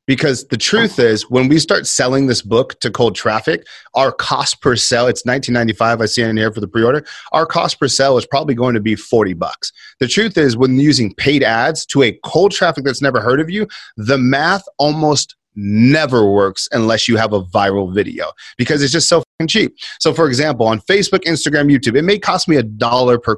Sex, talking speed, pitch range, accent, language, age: male, 220 wpm, 120-155 Hz, American, English, 30-49